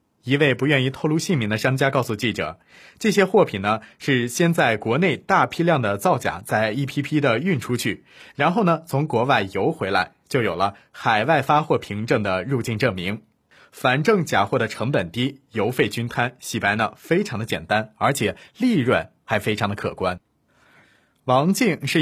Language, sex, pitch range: Chinese, male, 115-160 Hz